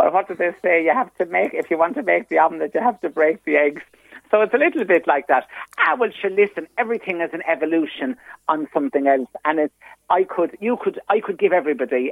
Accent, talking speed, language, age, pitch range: British, 250 wpm, English, 50-69, 135-175 Hz